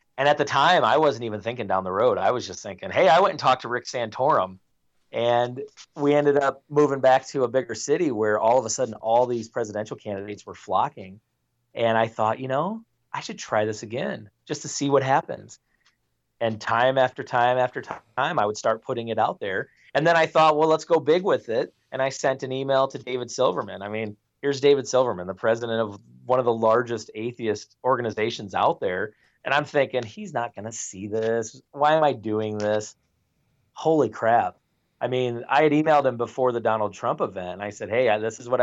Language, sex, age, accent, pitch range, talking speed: English, male, 30-49, American, 110-140 Hz, 215 wpm